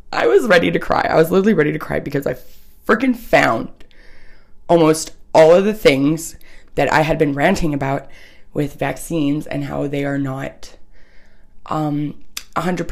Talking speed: 160 wpm